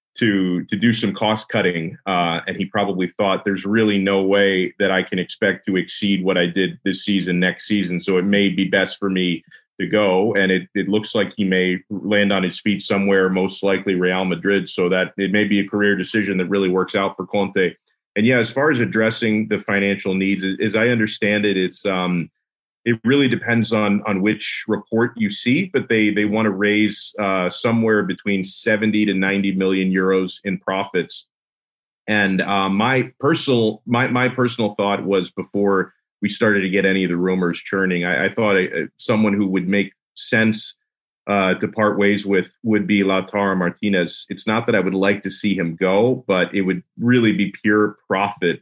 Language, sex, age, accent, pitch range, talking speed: English, male, 30-49, American, 95-105 Hz, 200 wpm